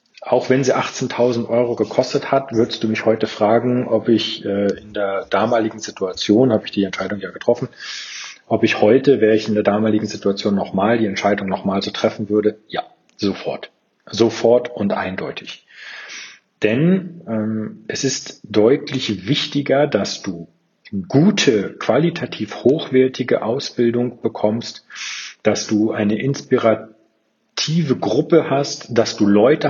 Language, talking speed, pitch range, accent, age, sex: German, 140 wpm, 105-130 Hz, German, 40-59, male